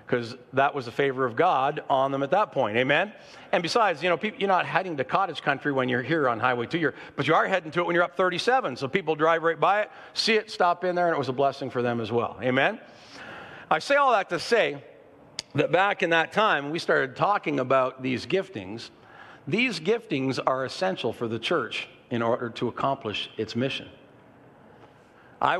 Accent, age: American, 50-69